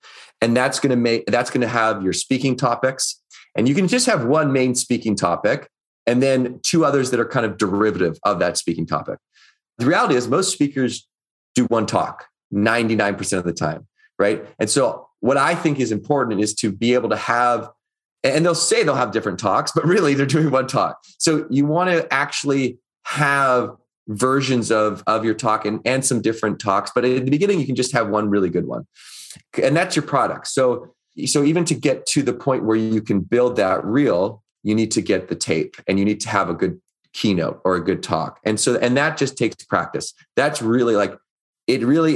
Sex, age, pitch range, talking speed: male, 30-49, 105-130 Hz, 210 wpm